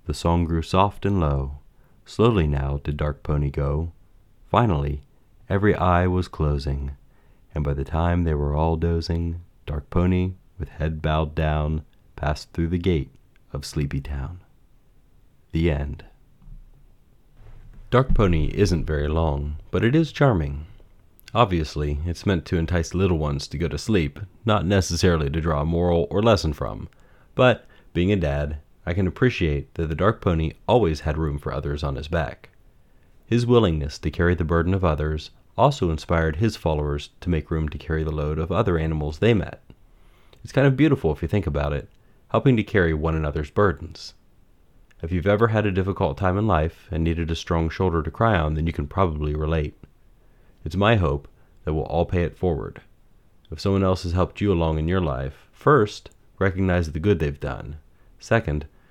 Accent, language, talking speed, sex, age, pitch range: American, English, 180 wpm, male, 30-49, 75-95 Hz